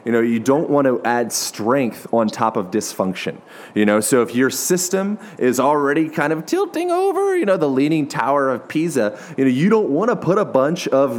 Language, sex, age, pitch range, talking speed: English, male, 30-49, 110-150 Hz, 220 wpm